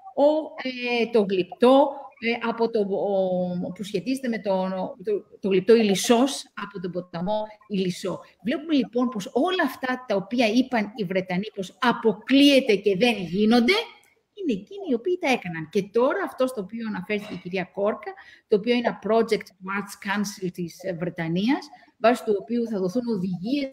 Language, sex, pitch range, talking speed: Greek, female, 195-270 Hz, 165 wpm